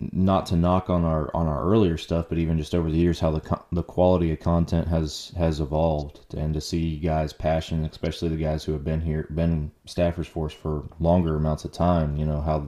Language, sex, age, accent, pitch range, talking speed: English, male, 20-39, American, 75-85 Hz, 225 wpm